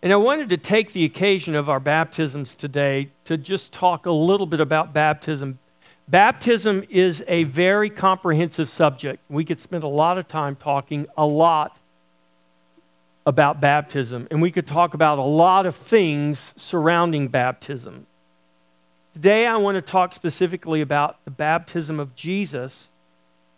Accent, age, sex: American, 50-69, male